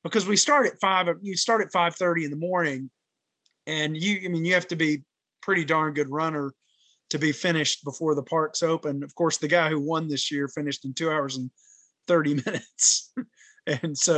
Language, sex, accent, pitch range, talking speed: English, male, American, 150-190 Hz, 205 wpm